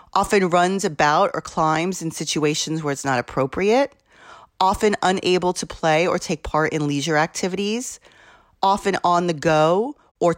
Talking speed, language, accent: 150 wpm, English, American